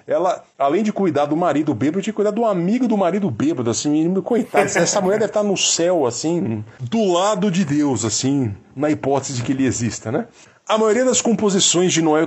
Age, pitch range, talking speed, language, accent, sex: 40-59, 120-180 Hz, 200 wpm, Portuguese, Brazilian, male